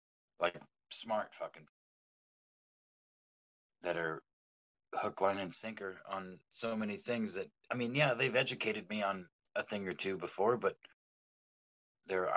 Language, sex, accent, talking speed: English, male, American, 135 wpm